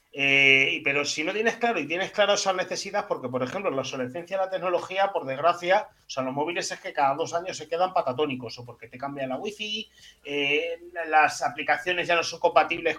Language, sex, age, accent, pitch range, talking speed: Spanish, male, 30-49, Spanish, 140-205 Hz, 210 wpm